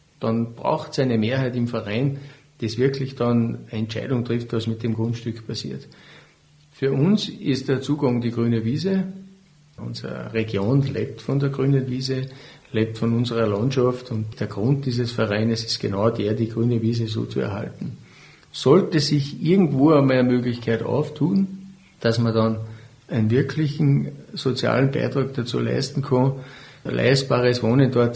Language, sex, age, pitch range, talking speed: German, male, 50-69, 115-135 Hz, 150 wpm